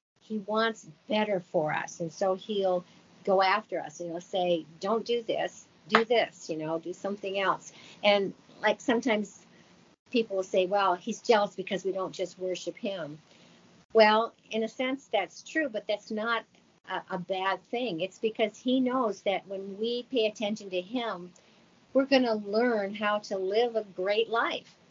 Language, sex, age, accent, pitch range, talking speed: English, female, 50-69, American, 180-225 Hz, 175 wpm